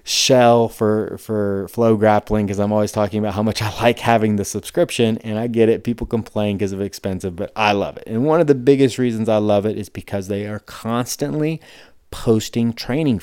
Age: 30-49